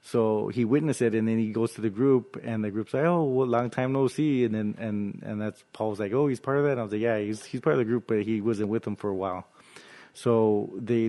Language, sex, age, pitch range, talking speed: English, male, 20-39, 105-120 Hz, 290 wpm